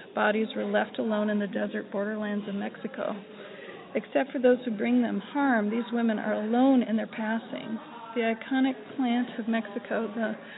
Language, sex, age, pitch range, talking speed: English, female, 40-59, 210-240 Hz, 170 wpm